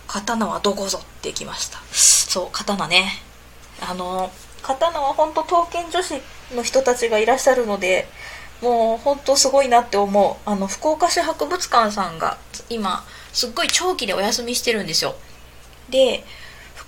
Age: 20-39